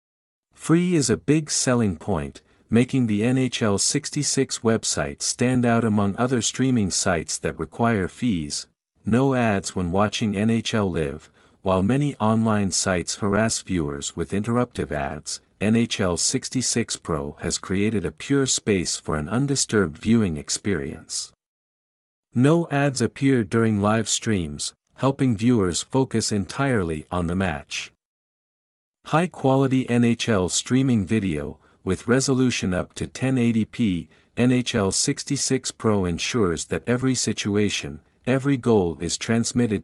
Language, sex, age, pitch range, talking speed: English, male, 50-69, 95-125 Hz, 120 wpm